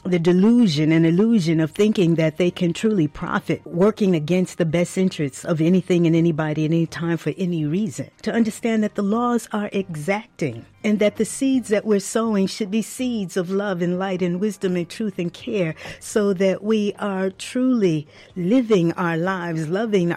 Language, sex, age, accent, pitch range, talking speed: English, female, 50-69, American, 155-205 Hz, 185 wpm